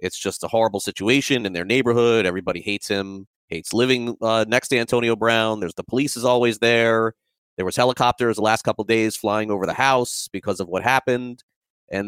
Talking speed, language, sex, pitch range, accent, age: 205 wpm, English, male, 100-125 Hz, American, 30-49